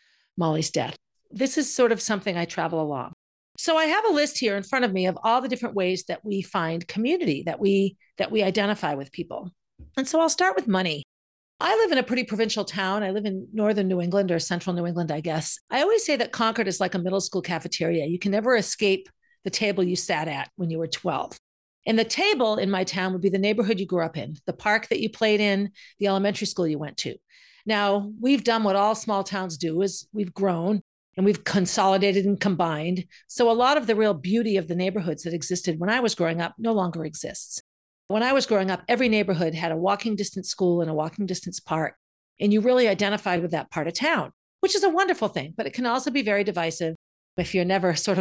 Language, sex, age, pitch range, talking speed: English, female, 50-69, 175-225 Hz, 235 wpm